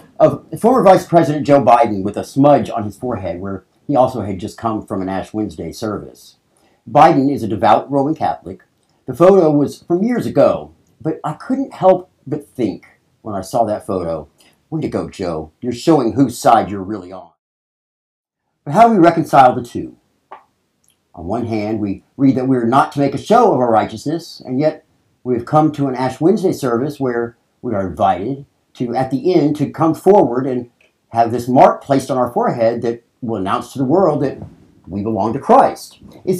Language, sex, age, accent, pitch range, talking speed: English, male, 50-69, American, 105-150 Hz, 200 wpm